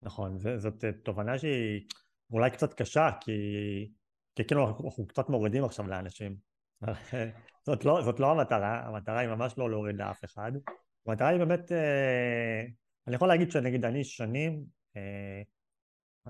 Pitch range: 110-145 Hz